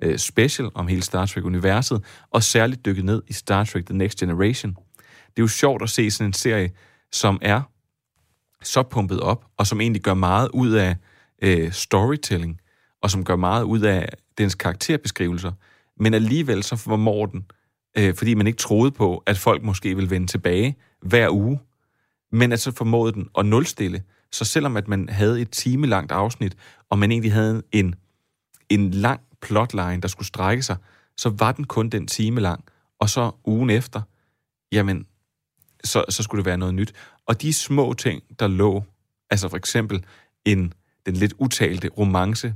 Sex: male